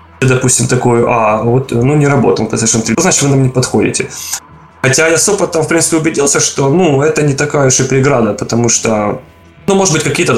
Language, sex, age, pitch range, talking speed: Russian, male, 20-39, 115-135 Hz, 200 wpm